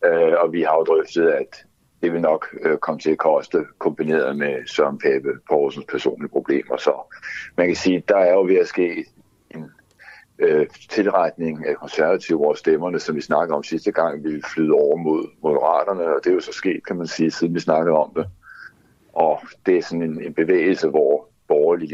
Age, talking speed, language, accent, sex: 60-79, 200 wpm, Danish, native, male